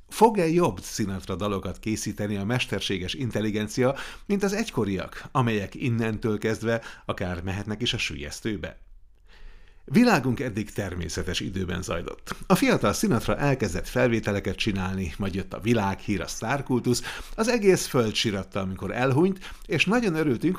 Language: Hungarian